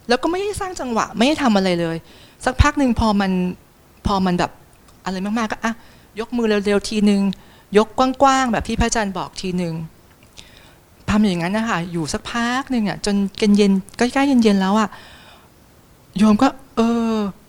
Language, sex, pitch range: Thai, female, 170-220 Hz